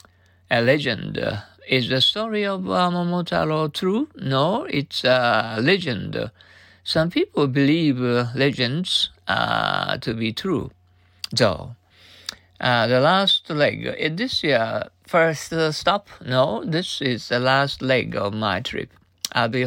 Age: 50-69